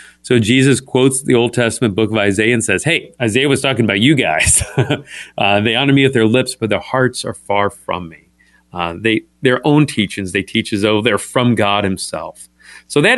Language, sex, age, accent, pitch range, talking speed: English, male, 40-59, American, 105-135 Hz, 210 wpm